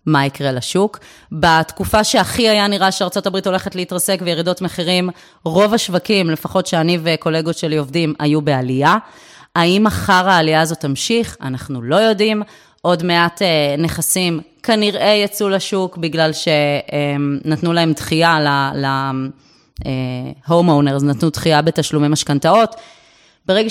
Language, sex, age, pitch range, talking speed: Hebrew, female, 20-39, 160-205 Hz, 125 wpm